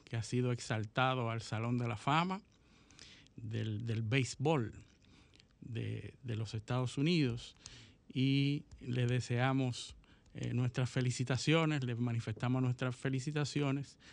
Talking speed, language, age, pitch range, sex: 115 wpm, Spanish, 50-69, 120-140 Hz, male